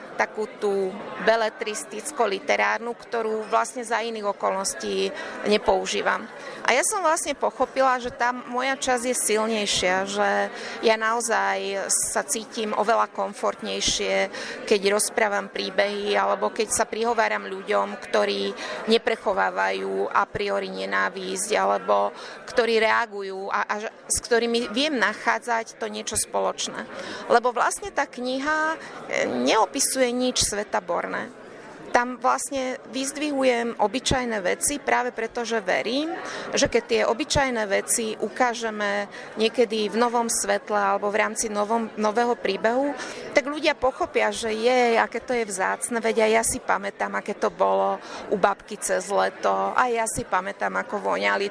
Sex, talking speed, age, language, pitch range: female, 130 wpm, 30-49, Slovak, 195-245 Hz